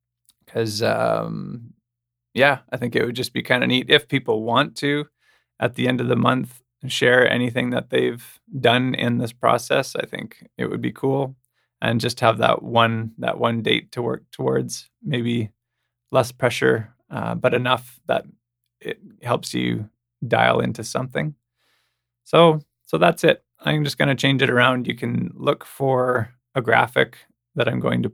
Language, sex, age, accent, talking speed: English, male, 20-39, American, 170 wpm